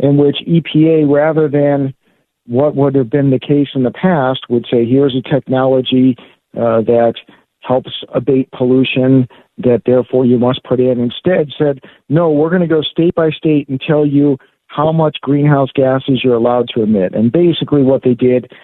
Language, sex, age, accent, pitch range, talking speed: English, male, 50-69, American, 125-150 Hz, 180 wpm